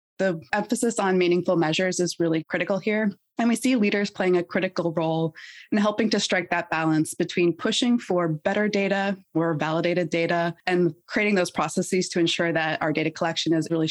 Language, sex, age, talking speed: English, female, 20-39, 185 wpm